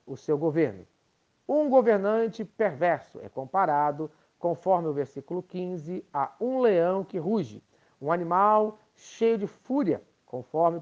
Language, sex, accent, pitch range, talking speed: Portuguese, male, Brazilian, 150-215 Hz, 130 wpm